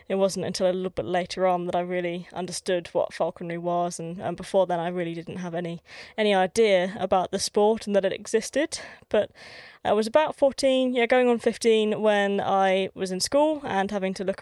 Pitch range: 185-215 Hz